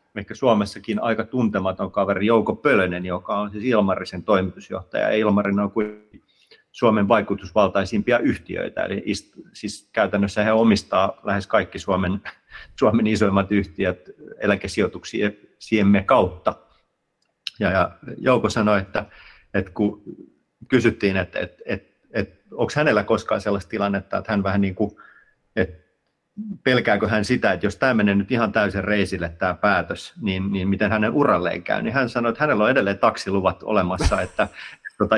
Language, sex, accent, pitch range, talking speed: Finnish, male, native, 95-110 Hz, 140 wpm